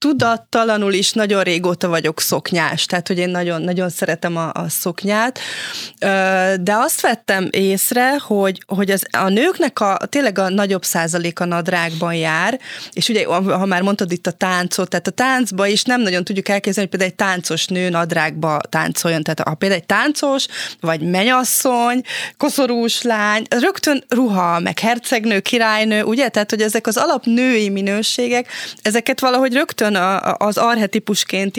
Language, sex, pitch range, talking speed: Hungarian, female, 180-230 Hz, 150 wpm